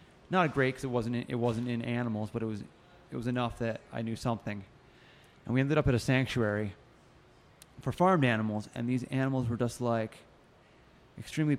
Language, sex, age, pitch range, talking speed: English, male, 20-39, 115-135 Hz, 190 wpm